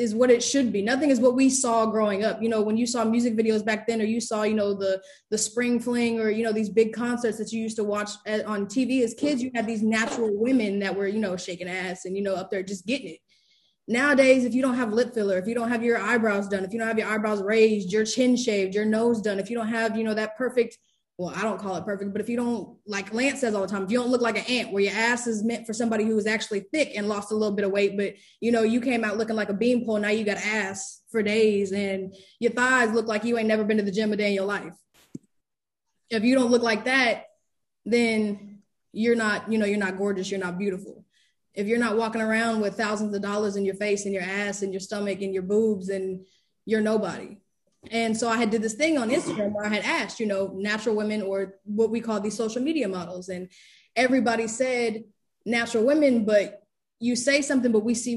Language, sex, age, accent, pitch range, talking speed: English, female, 20-39, American, 200-235 Hz, 260 wpm